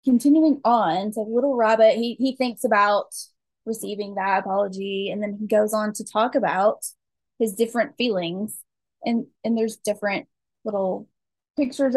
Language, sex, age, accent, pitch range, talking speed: English, female, 10-29, American, 205-245 Hz, 145 wpm